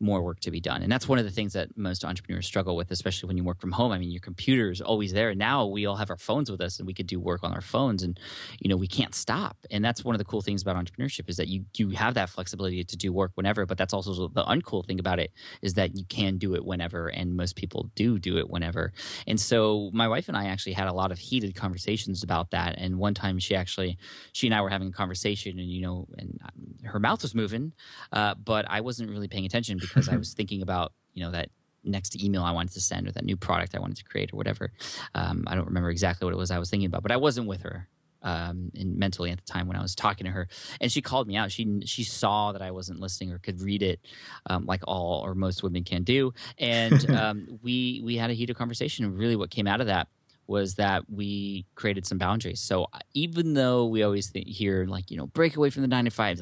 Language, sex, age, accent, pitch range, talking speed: English, male, 20-39, American, 90-115 Hz, 265 wpm